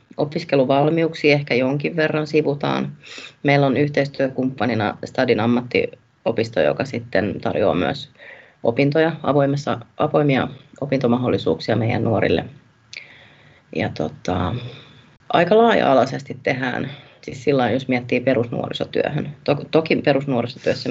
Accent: native